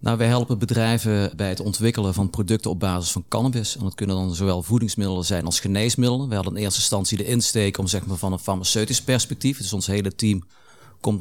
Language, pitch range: Dutch, 95-110 Hz